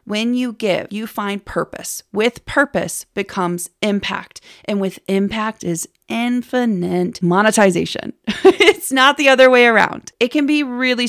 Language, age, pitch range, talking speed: English, 30-49, 190-245 Hz, 140 wpm